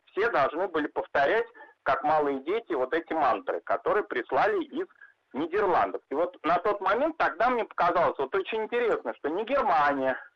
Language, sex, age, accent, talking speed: Russian, male, 40-59, native, 160 wpm